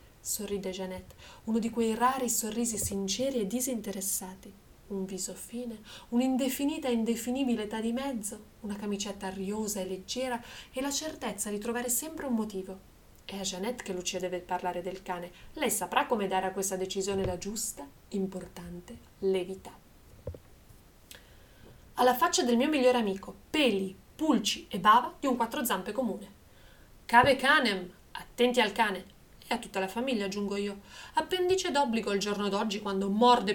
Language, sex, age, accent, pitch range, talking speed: Italian, female, 30-49, native, 195-250 Hz, 150 wpm